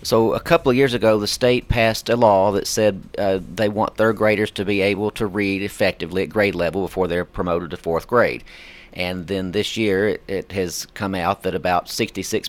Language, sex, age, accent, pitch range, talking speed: English, male, 40-59, American, 90-105 Hz, 215 wpm